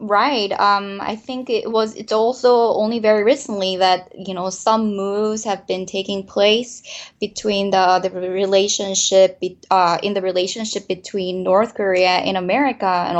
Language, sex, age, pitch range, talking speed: English, female, 20-39, 180-210 Hz, 155 wpm